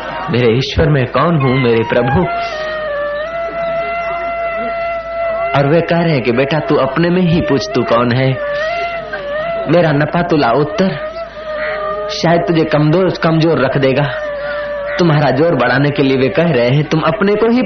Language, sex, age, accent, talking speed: Hindi, male, 30-49, native, 155 wpm